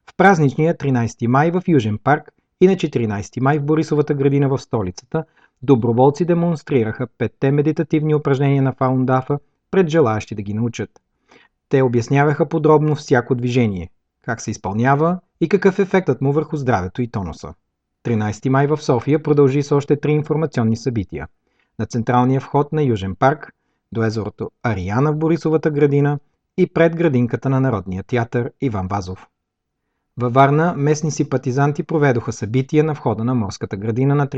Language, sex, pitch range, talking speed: Bulgarian, male, 120-155 Hz, 150 wpm